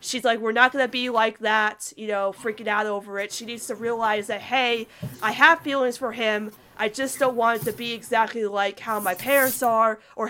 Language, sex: English, female